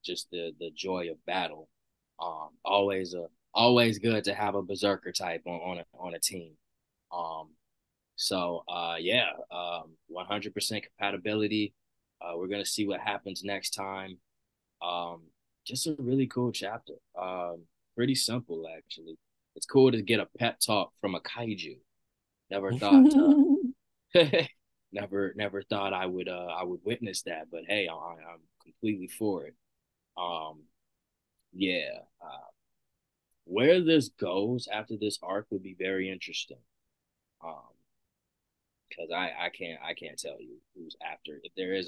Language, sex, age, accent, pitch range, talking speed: English, male, 20-39, American, 85-105 Hz, 150 wpm